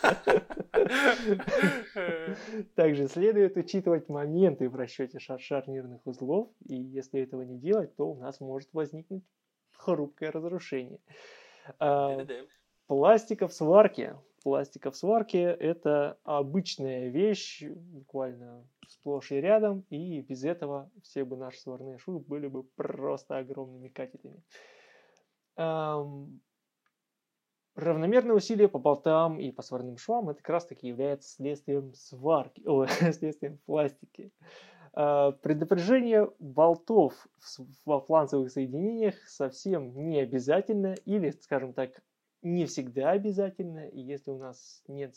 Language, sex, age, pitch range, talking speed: Russian, male, 20-39, 135-190 Hz, 110 wpm